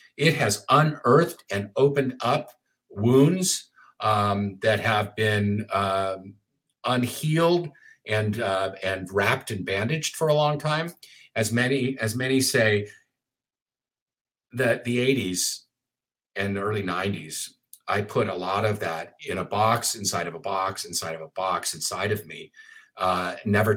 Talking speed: 145 wpm